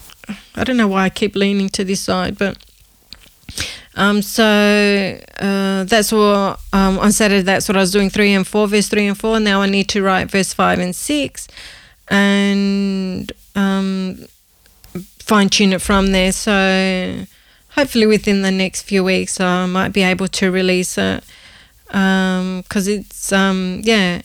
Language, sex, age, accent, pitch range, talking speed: English, female, 30-49, Australian, 190-210 Hz, 160 wpm